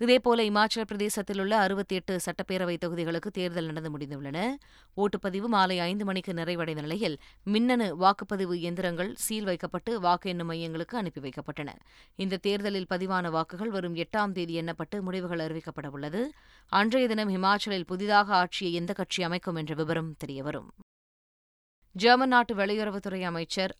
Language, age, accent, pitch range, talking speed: Tamil, 20-39, native, 165-205 Hz, 130 wpm